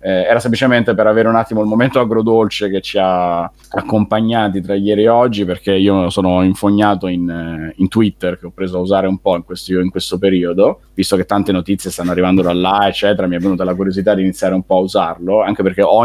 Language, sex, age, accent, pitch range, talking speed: Italian, male, 30-49, native, 90-100 Hz, 220 wpm